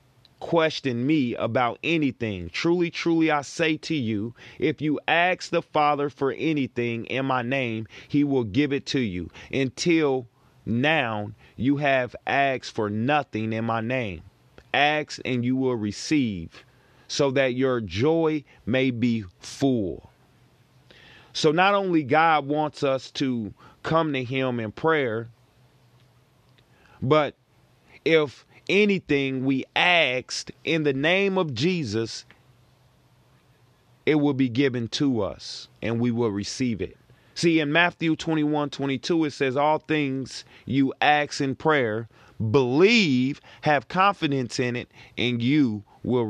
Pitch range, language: 120-150 Hz, English